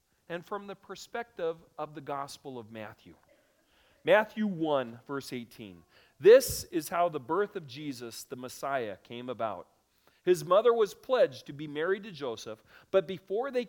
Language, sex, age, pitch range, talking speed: English, male, 40-59, 120-190 Hz, 160 wpm